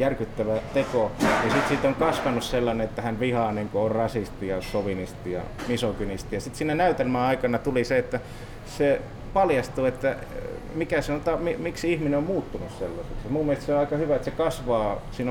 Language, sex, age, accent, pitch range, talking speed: Finnish, male, 30-49, native, 110-125 Hz, 190 wpm